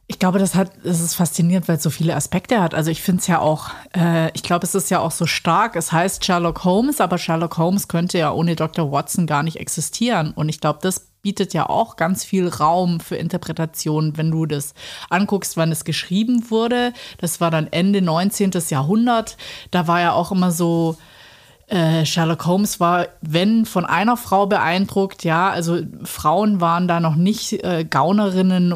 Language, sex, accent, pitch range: German, female, German, 160-190 Hz